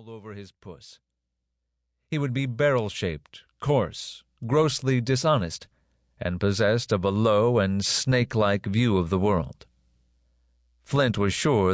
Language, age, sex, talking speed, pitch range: English, 40-59, male, 125 wpm, 80-125 Hz